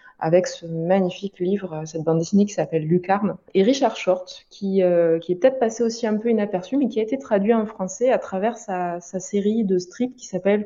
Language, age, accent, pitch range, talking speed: French, 20-39, French, 180-220 Hz, 220 wpm